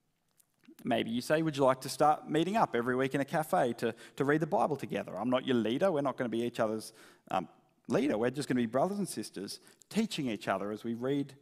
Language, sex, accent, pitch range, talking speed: English, male, Australian, 125-180 Hz, 250 wpm